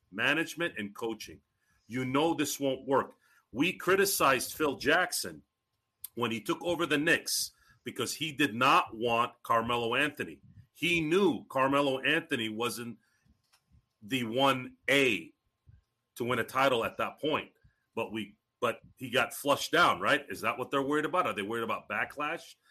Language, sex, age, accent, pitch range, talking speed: English, male, 40-59, American, 130-195 Hz, 150 wpm